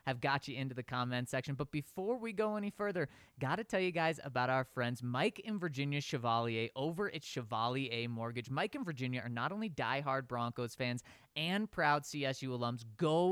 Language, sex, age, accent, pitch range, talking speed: English, male, 20-39, American, 125-180 Hz, 190 wpm